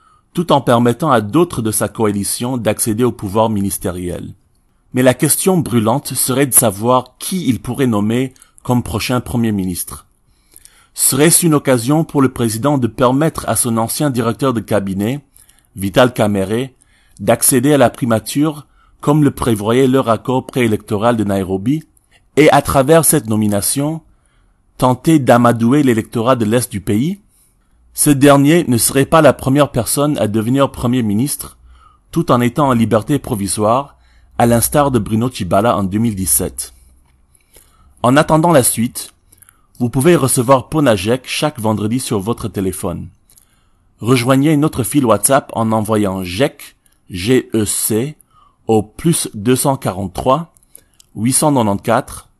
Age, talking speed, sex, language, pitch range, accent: 40-59, 135 wpm, male, French, 105-140 Hz, French